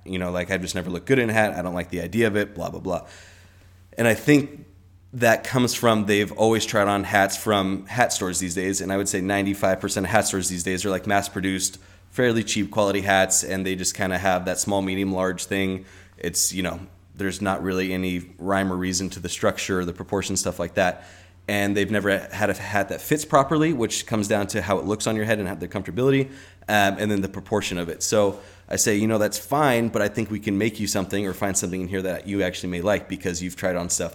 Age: 20-39